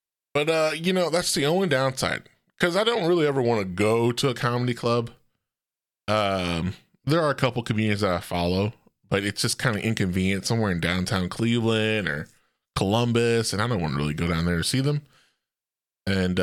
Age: 20-39